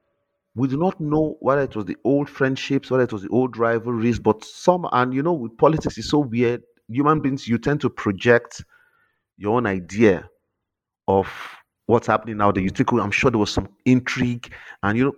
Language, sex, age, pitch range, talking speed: English, male, 40-59, 100-135 Hz, 205 wpm